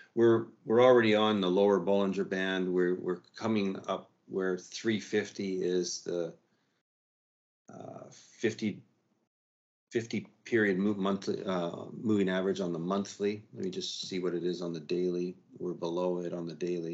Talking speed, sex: 155 wpm, male